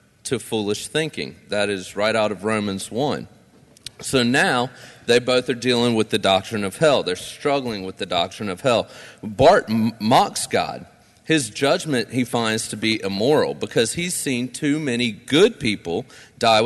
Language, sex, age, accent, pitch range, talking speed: English, male, 40-59, American, 105-130 Hz, 165 wpm